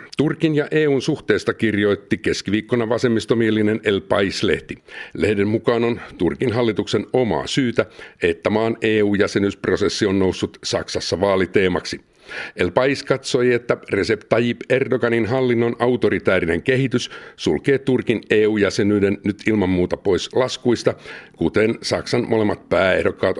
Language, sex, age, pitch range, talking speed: Finnish, male, 50-69, 105-130 Hz, 115 wpm